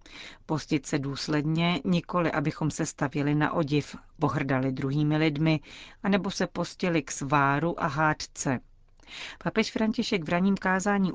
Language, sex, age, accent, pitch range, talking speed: Czech, female, 40-59, native, 145-165 Hz, 130 wpm